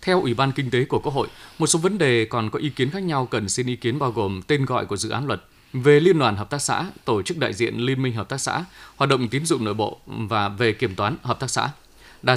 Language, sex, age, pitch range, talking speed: Vietnamese, male, 20-39, 115-155 Hz, 285 wpm